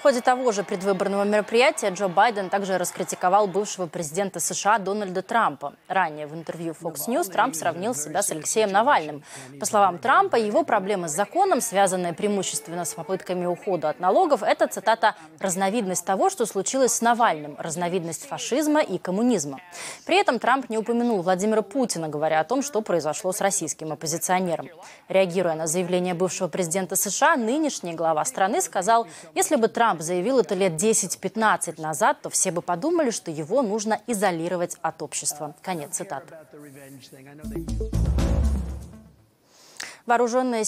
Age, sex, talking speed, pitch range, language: 20-39, female, 145 wpm, 170-220 Hz, Russian